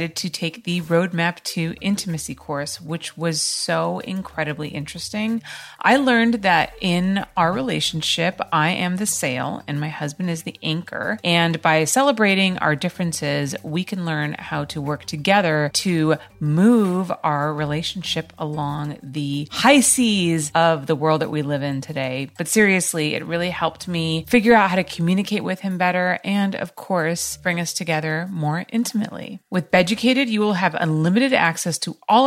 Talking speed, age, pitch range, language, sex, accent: 165 wpm, 30-49, 155-205 Hz, English, female, American